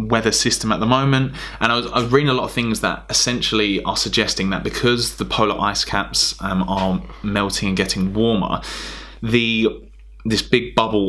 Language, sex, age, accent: English, male, 20-39, British